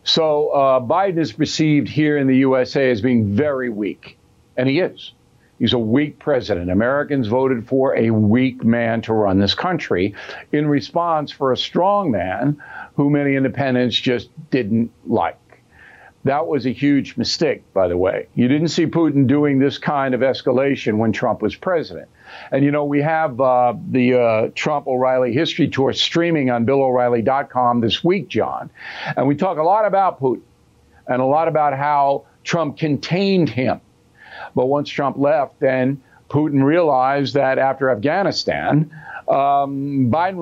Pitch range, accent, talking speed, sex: 125-150 Hz, American, 160 wpm, male